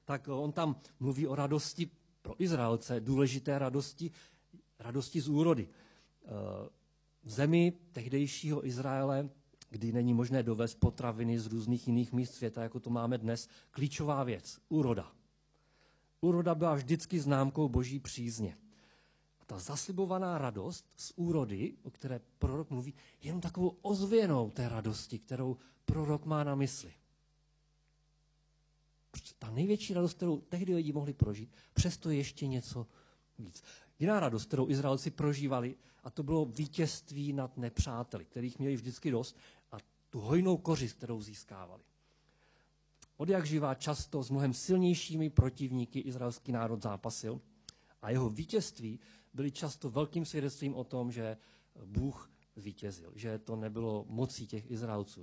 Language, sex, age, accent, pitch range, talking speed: Czech, male, 40-59, native, 115-150 Hz, 135 wpm